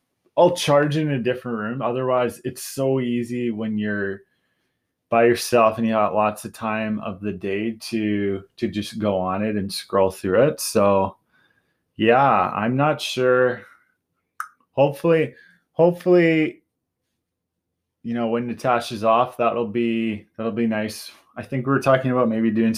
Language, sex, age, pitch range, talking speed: English, male, 20-39, 105-125 Hz, 155 wpm